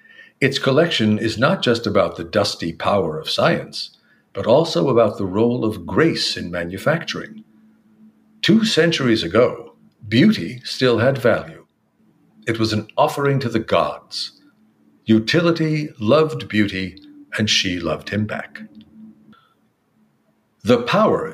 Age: 60-79